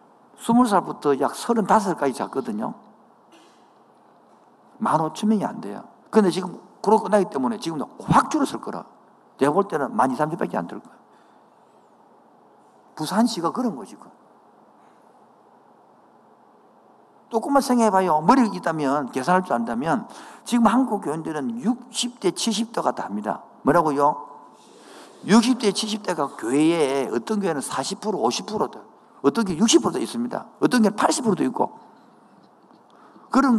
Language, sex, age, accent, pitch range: Korean, male, 50-69, native, 165-230 Hz